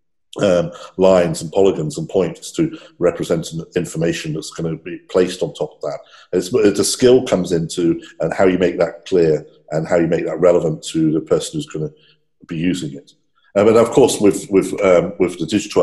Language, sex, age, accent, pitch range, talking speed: English, male, 50-69, British, 80-100 Hz, 210 wpm